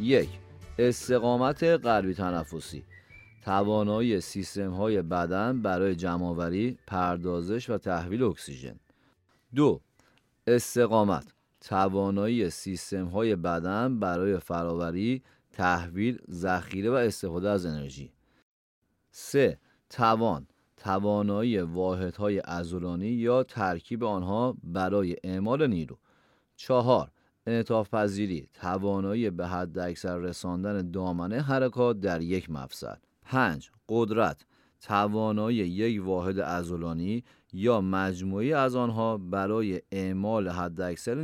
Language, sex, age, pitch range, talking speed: Persian, male, 30-49, 90-110 Hz, 90 wpm